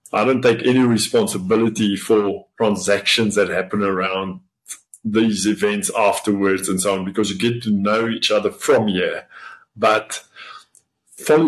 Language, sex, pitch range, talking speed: English, male, 100-125 Hz, 140 wpm